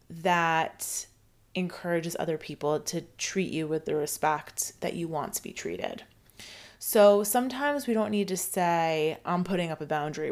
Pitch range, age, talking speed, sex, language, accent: 160-205 Hz, 20-39, 165 wpm, female, English, American